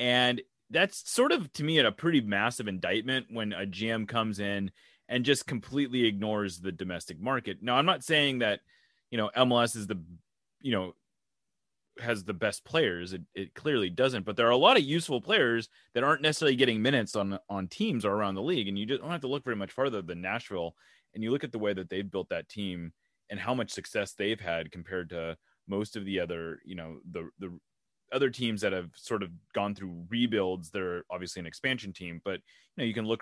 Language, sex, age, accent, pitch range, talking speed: English, male, 30-49, American, 95-130 Hz, 220 wpm